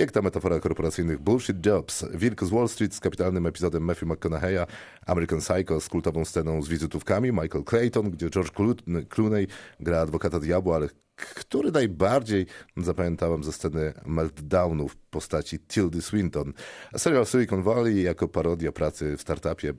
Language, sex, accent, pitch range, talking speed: Polish, male, native, 80-95 Hz, 150 wpm